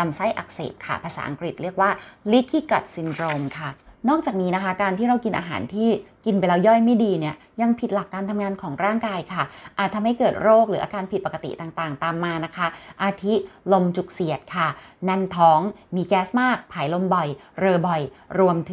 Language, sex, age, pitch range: Thai, female, 20-39, 155-200 Hz